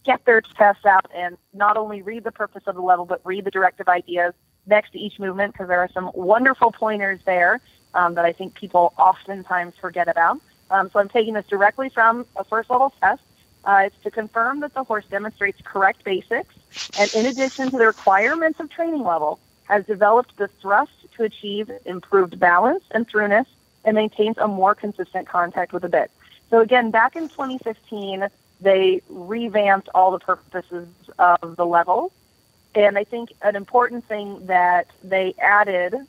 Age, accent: 30-49, American